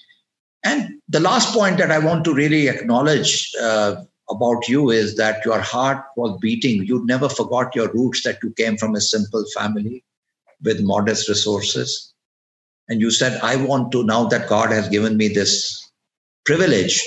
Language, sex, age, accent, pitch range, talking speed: English, male, 50-69, Indian, 105-130 Hz, 170 wpm